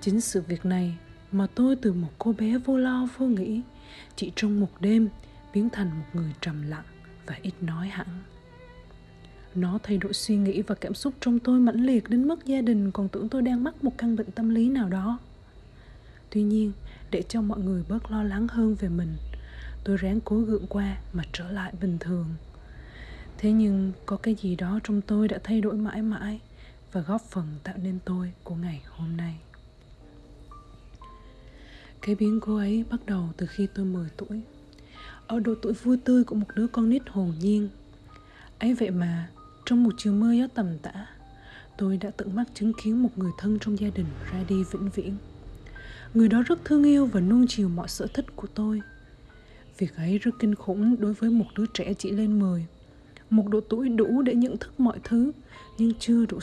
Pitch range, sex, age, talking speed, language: 180-225 Hz, female, 20-39, 200 wpm, Vietnamese